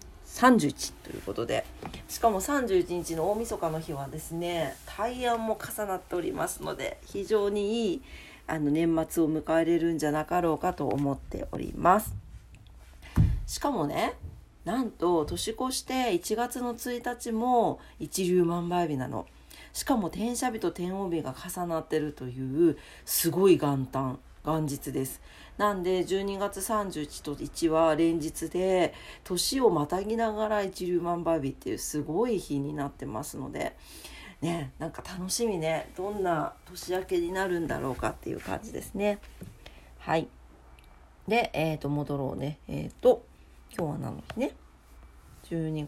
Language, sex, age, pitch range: Japanese, female, 40-59, 145-205 Hz